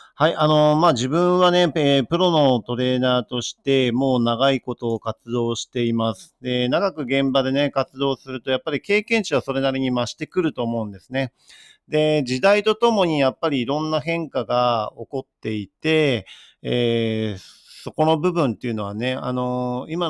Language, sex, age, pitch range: Japanese, male, 40-59, 115-145 Hz